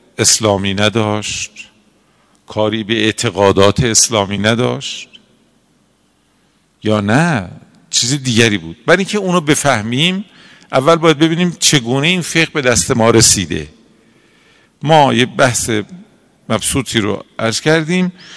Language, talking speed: Persian, 110 wpm